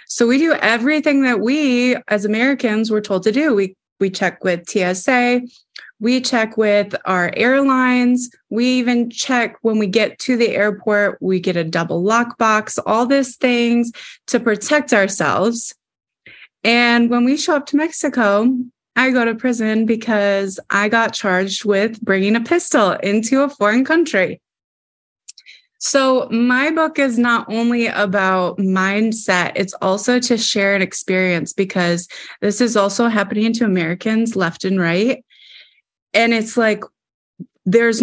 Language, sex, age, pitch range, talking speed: English, female, 20-39, 195-245 Hz, 145 wpm